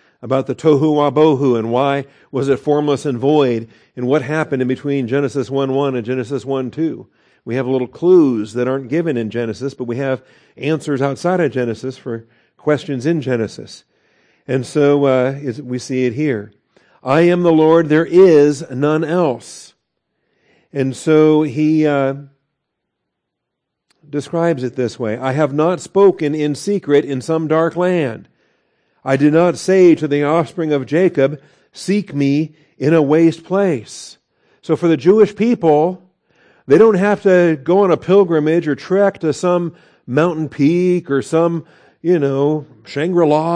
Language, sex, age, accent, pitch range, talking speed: English, male, 50-69, American, 135-170 Hz, 160 wpm